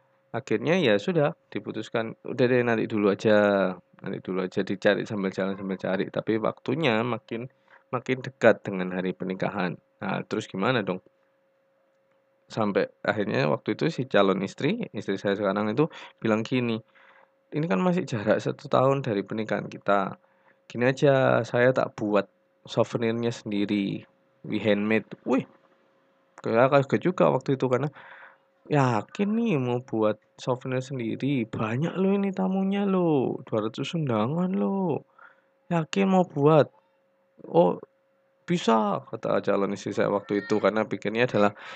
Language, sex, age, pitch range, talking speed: Indonesian, male, 20-39, 100-165 Hz, 135 wpm